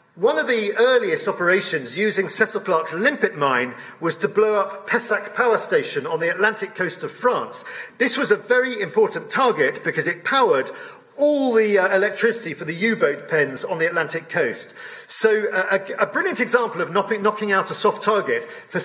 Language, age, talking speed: English, 50-69, 185 wpm